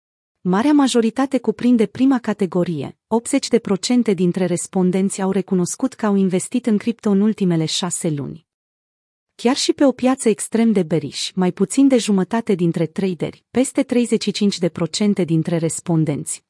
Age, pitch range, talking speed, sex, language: 30-49, 175-225 Hz, 135 wpm, female, Romanian